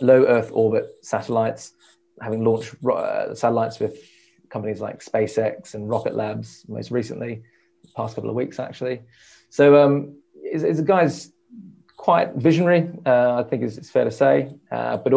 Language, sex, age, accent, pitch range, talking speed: English, male, 20-39, British, 110-150 Hz, 150 wpm